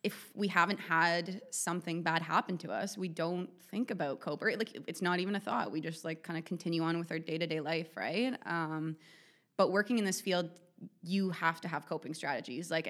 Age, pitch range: 20-39, 160-180 Hz